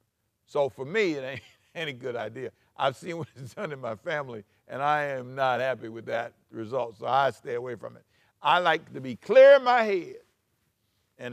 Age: 60-79